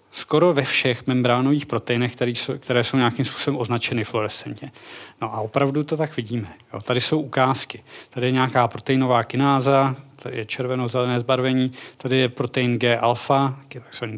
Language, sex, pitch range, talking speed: Czech, male, 115-135 Hz, 155 wpm